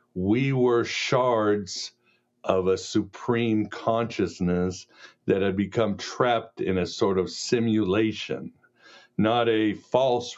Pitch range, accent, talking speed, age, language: 90-115 Hz, American, 110 wpm, 60-79, English